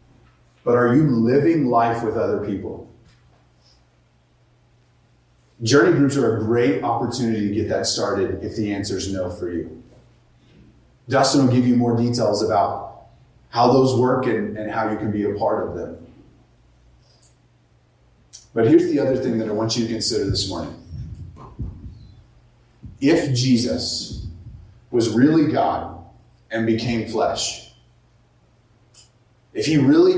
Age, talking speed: 30-49, 135 wpm